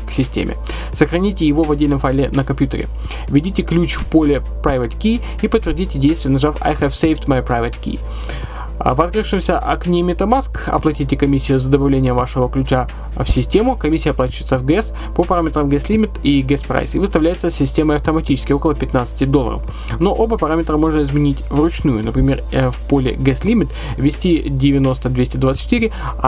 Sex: male